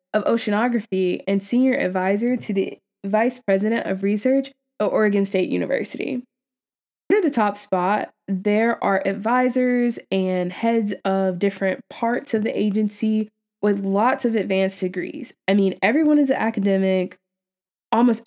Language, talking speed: English, 140 wpm